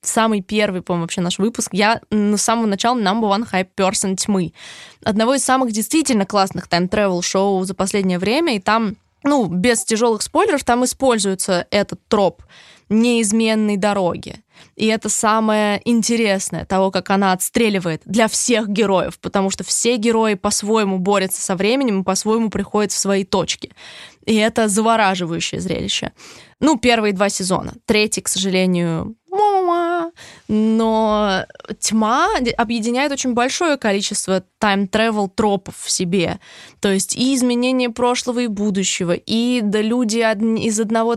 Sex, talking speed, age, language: female, 135 wpm, 20-39, Russian